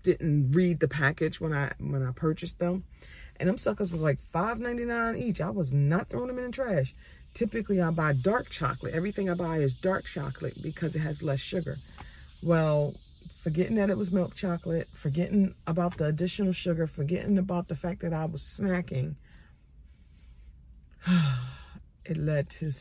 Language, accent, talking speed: English, American, 170 wpm